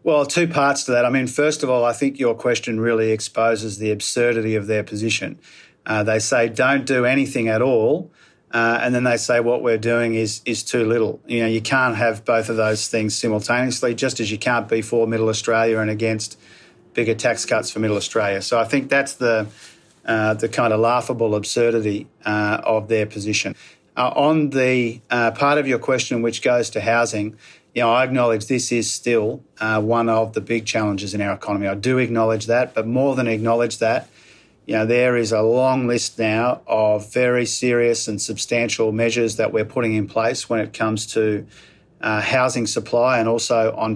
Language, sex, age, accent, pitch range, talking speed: English, male, 40-59, Australian, 110-120 Hz, 200 wpm